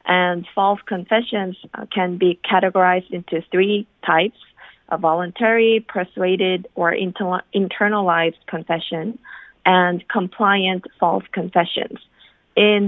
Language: English